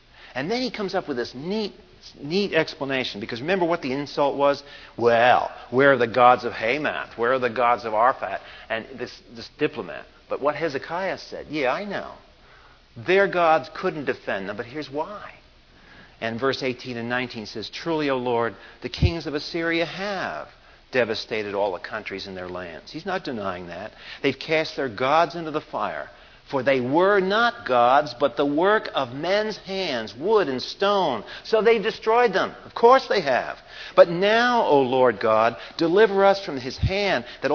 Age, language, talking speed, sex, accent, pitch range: 50-69, English, 180 wpm, male, American, 120-195 Hz